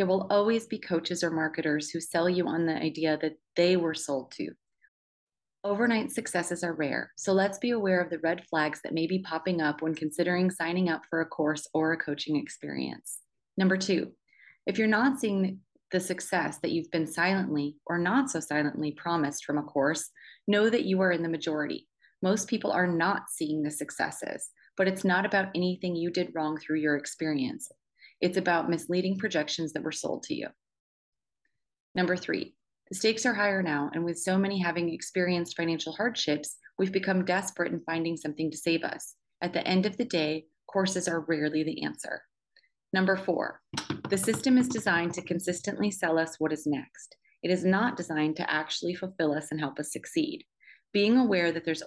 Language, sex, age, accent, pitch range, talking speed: English, female, 30-49, American, 160-195 Hz, 190 wpm